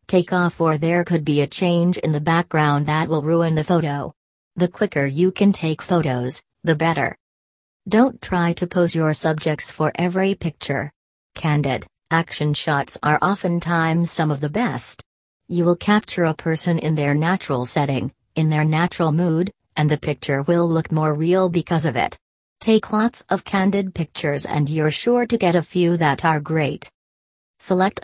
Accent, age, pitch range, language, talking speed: American, 40-59, 150-180 Hz, English, 175 wpm